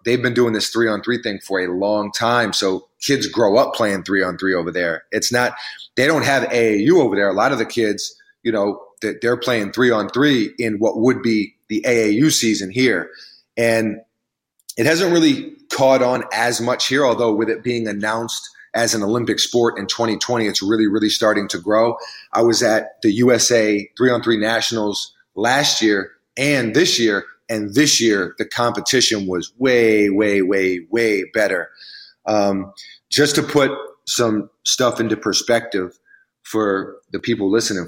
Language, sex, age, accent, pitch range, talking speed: English, male, 30-49, American, 105-125 Hz, 180 wpm